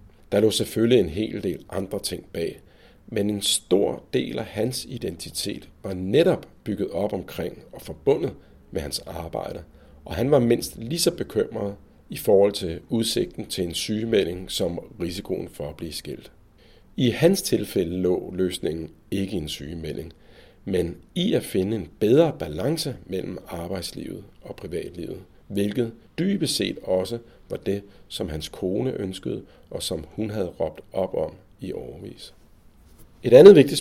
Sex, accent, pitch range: male, native, 90-110 Hz